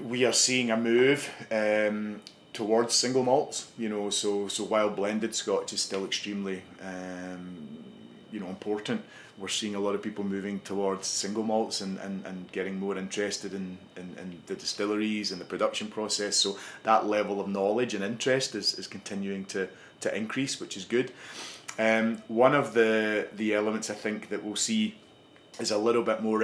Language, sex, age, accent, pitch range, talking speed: Hebrew, male, 30-49, British, 100-110 Hz, 180 wpm